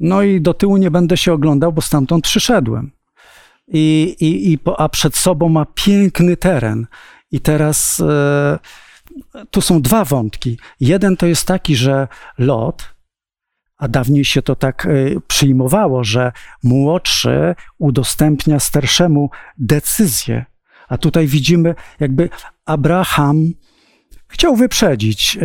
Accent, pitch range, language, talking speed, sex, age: native, 135-175 Hz, Polish, 110 wpm, male, 50-69